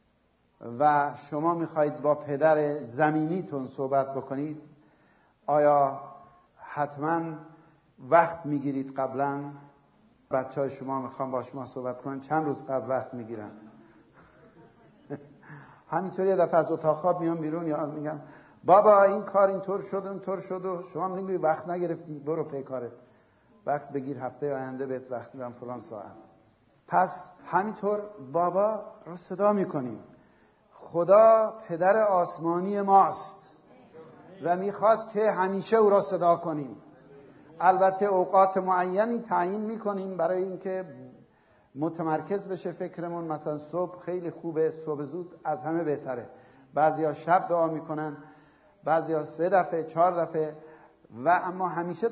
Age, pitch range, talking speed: 50-69, 140-180 Hz, 125 wpm